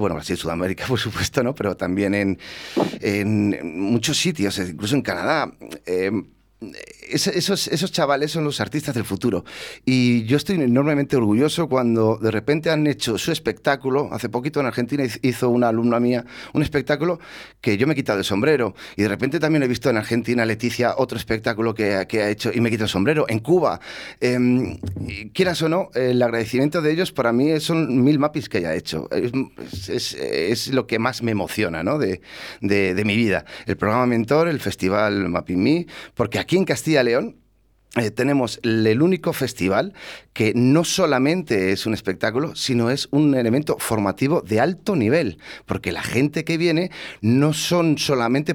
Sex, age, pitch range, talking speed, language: male, 30-49, 105-145 Hz, 185 wpm, Spanish